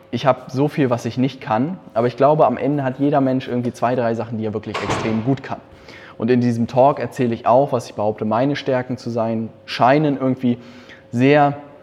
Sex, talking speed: male, 220 wpm